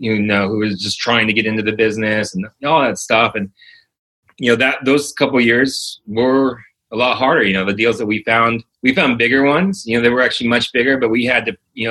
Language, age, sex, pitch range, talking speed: English, 30-49, male, 105-135 Hz, 250 wpm